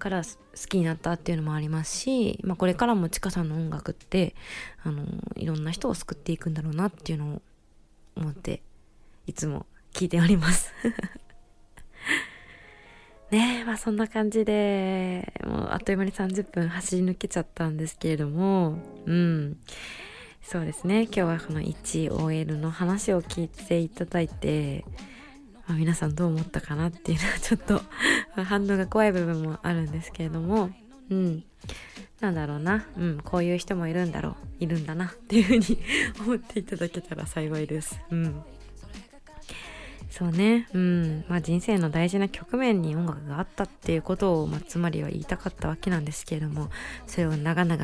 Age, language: 20-39, Japanese